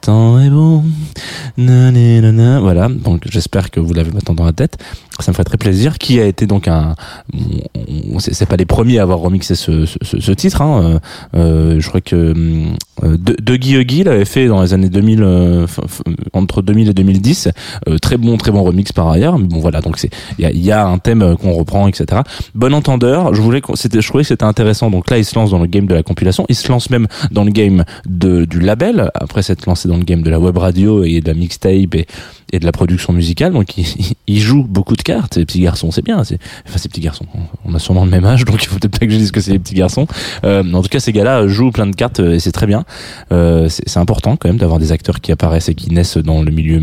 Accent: French